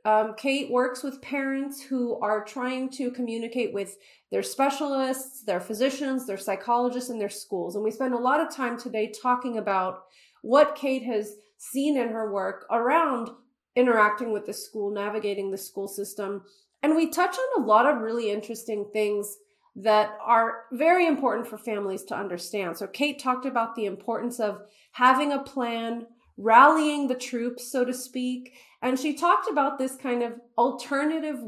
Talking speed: 170 wpm